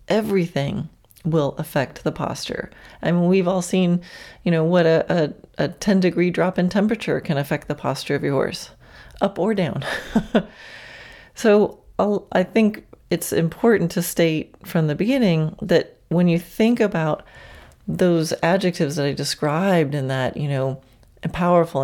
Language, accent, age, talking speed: English, American, 40-59, 160 wpm